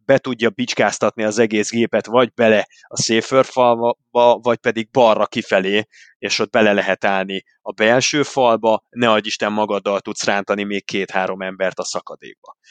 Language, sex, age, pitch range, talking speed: Hungarian, male, 30-49, 105-135 Hz, 160 wpm